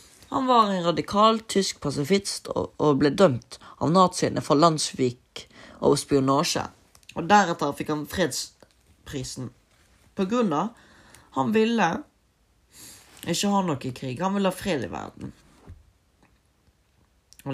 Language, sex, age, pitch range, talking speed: Amharic, female, 30-49, 125-210 Hz, 130 wpm